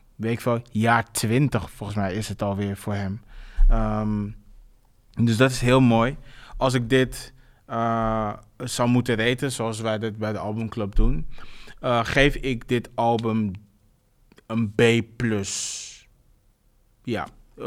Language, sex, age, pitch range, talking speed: Dutch, male, 20-39, 110-125 Hz, 130 wpm